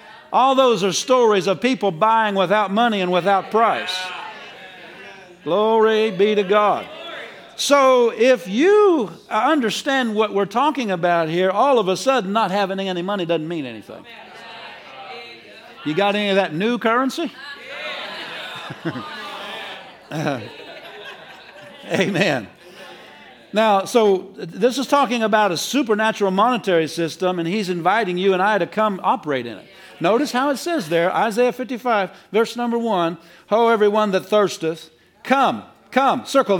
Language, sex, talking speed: English, male, 135 wpm